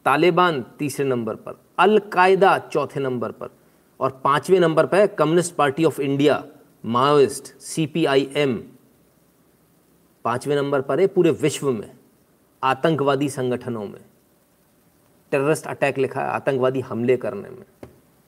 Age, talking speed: 40-59, 125 wpm